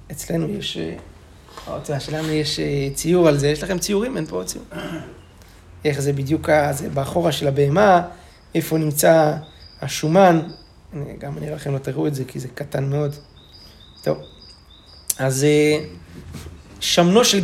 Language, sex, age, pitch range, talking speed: Hebrew, male, 30-49, 140-185 Hz, 140 wpm